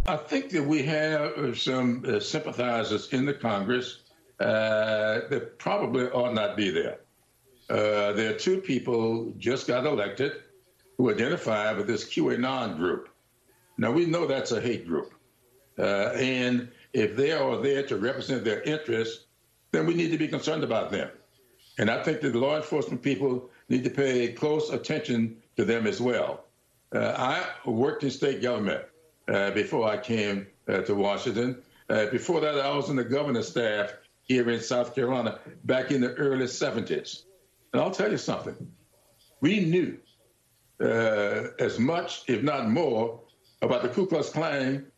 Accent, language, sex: American, English, male